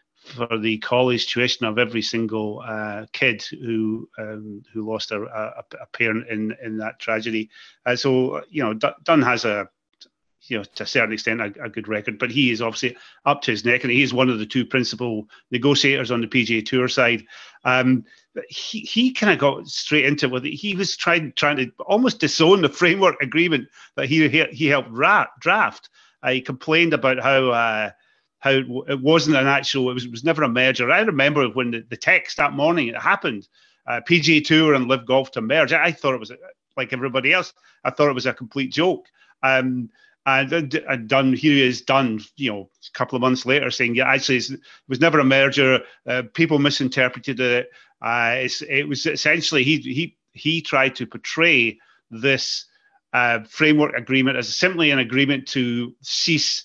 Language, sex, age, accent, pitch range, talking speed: English, male, 30-49, British, 120-145 Hz, 200 wpm